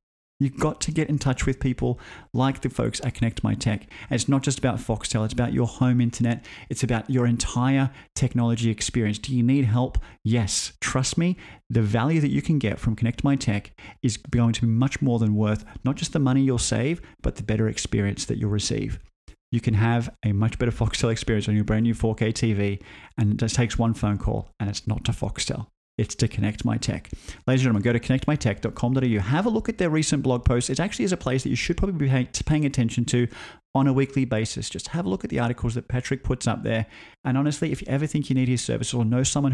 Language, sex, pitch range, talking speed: English, male, 110-130 Hz, 240 wpm